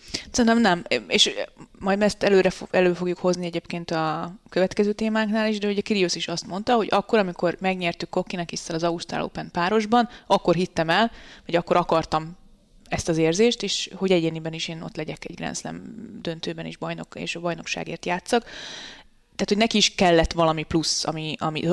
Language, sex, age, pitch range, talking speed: Hungarian, female, 20-39, 160-200 Hz, 175 wpm